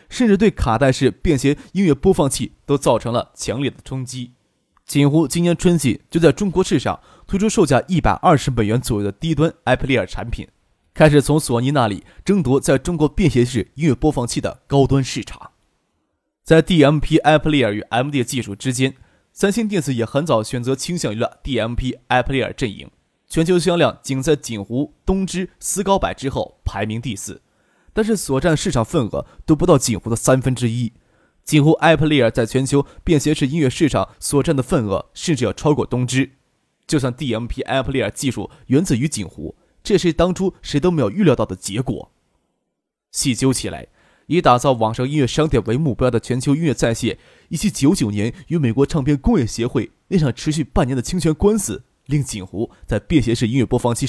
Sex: male